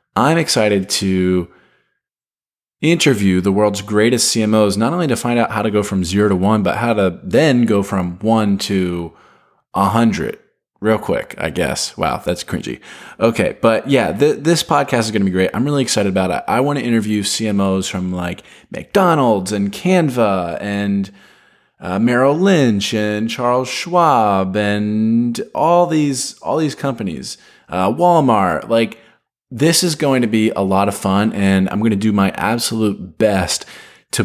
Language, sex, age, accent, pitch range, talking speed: English, male, 20-39, American, 95-115 Hz, 170 wpm